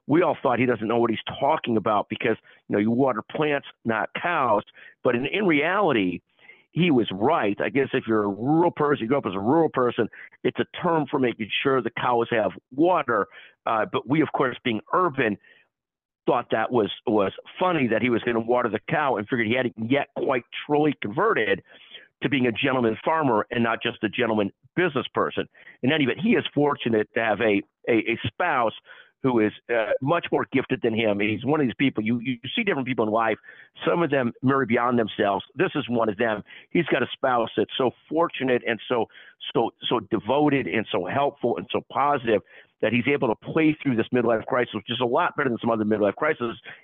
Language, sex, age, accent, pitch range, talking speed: English, male, 50-69, American, 110-140 Hz, 215 wpm